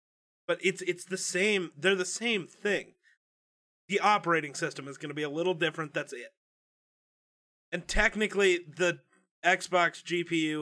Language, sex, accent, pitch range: English, male, American, 155-190 Hz